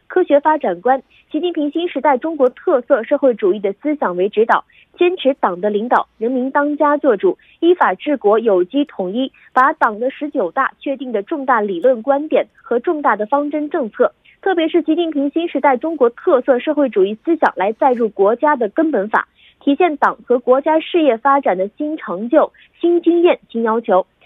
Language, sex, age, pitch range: Korean, female, 20-39, 230-315 Hz